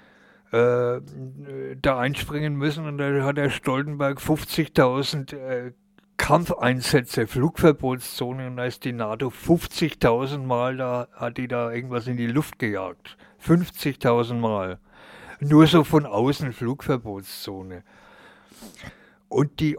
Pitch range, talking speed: 120-145 Hz, 110 wpm